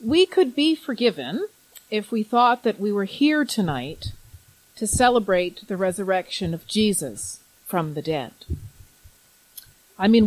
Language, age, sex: English, 40-59, female